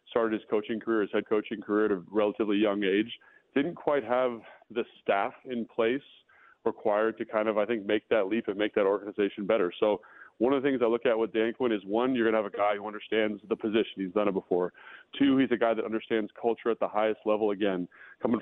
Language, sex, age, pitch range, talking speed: English, male, 30-49, 105-120 Hz, 240 wpm